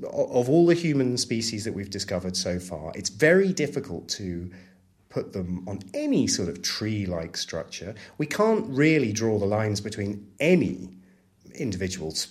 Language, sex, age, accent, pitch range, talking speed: English, male, 30-49, British, 90-110 Hz, 150 wpm